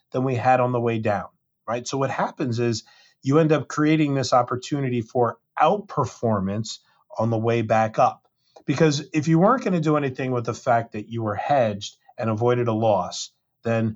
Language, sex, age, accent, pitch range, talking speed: English, male, 30-49, American, 100-125 Hz, 195 wpm